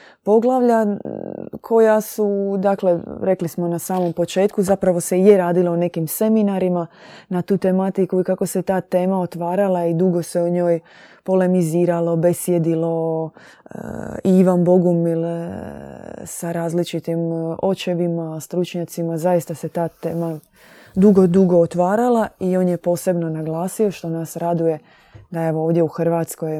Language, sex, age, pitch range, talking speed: Croatian, female, 20-39, 165-190 Hz, 135 wpm